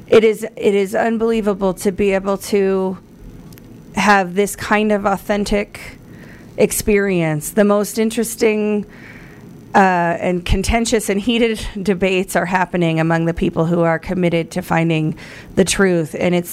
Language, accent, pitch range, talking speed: English, American, 170-200 Hz, 140 wpm